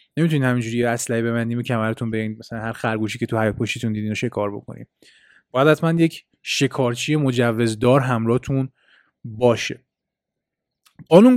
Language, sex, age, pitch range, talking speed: Persian, male, 20-39, 120-150 Hz, 130 wpm